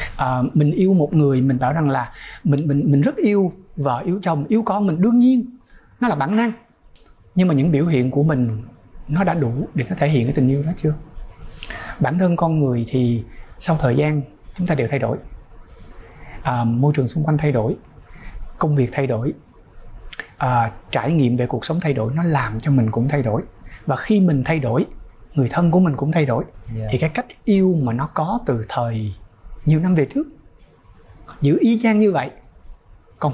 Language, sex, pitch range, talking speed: Vietnamese, male, 120-170 Hz, 200 wpm